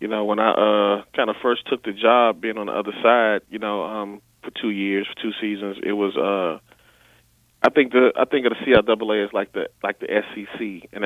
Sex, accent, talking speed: male, American, 235 wpm